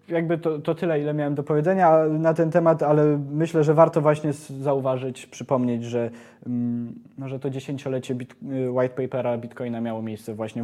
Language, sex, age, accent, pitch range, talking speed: Polish, male, 20-39, native, 140-170 Hz, 165 wpm